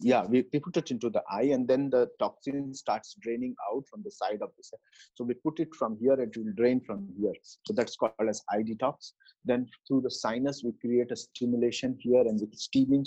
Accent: Indian